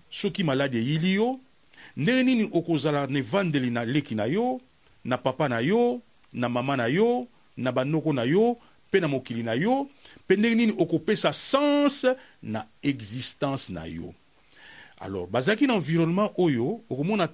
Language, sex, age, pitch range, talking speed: English, male, 40-59, 130-200 Hz, 165 wpm